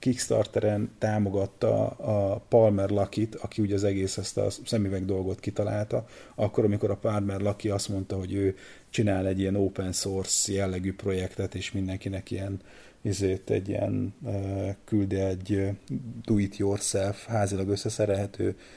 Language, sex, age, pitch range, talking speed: Hungarian, male, 30-49, 95-110 Hz, 130 wpm